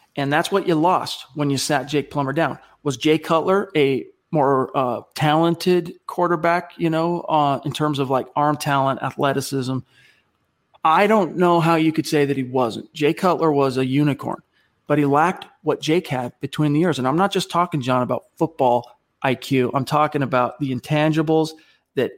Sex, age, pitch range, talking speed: male, 40-59, 135-160 Hz, 185 wpm